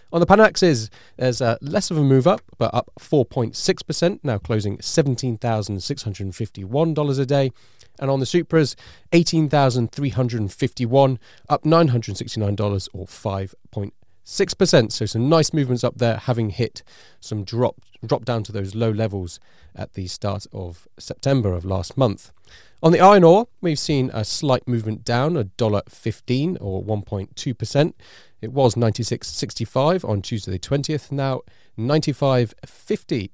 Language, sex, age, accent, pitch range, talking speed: English, male, 30-49, British, 105-140 Hz, 135 wpm